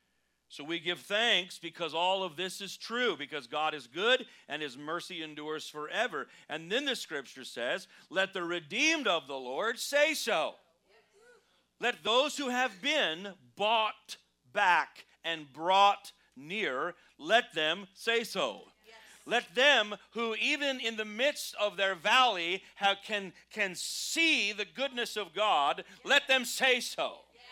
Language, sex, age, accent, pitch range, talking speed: English, male, 40-59, American, 175-260 Hz, 145 wpm